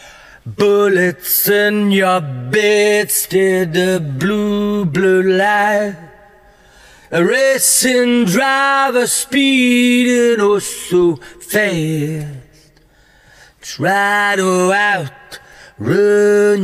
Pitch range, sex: 175-205 Hz, male